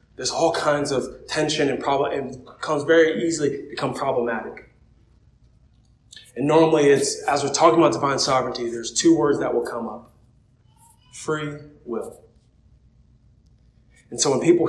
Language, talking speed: English, 145 wpm